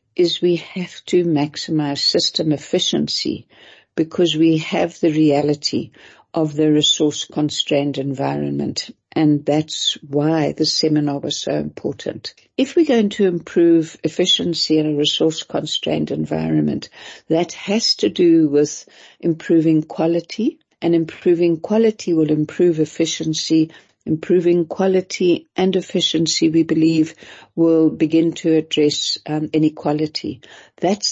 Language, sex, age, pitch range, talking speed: English, female, 60-79, 150-175 Hz, 115 wpm